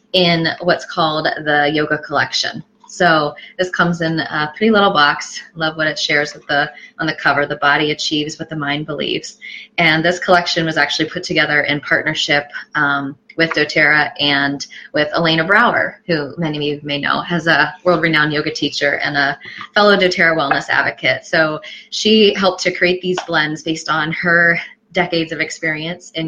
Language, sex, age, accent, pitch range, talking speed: English, female, 20-39, American, 150-175 Hz, 175 wpm